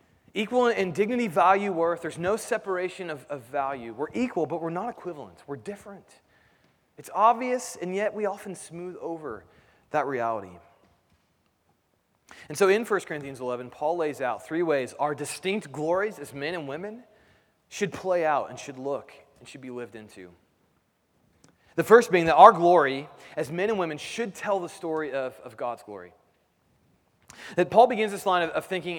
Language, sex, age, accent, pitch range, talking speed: English, male, 30-49, American, 145-190 Hz, 170 wpm